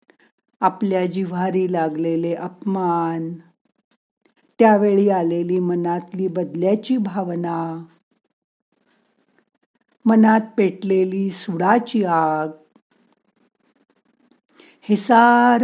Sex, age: female, 50-69